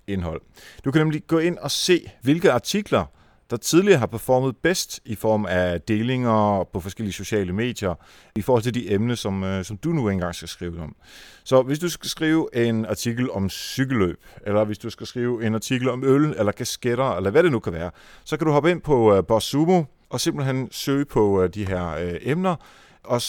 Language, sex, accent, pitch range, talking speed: Danish, male, native, 100-130 Hz, 200 wpm